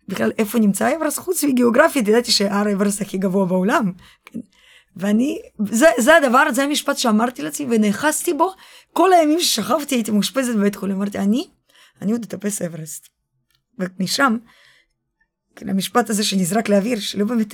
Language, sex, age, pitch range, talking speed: Hebrew, female, 20-39, 190-230 Hz, 150 wpm